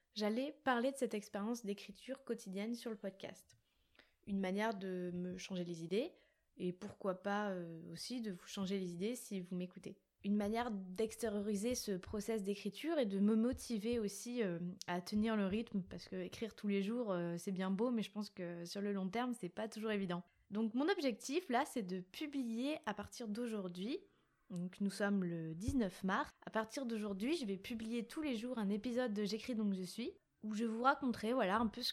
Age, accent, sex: 20-39, French, female